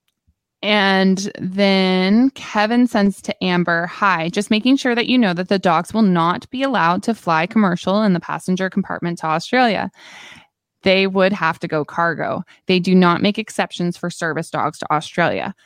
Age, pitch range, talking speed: 20-39, 170-200 Hz, 175 wpm